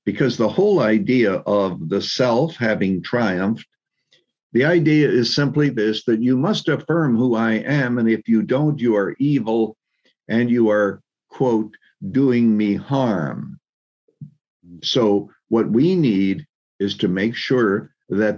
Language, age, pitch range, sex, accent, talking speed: English, 60-79, 100-130 Hz, male, American, 145 wpm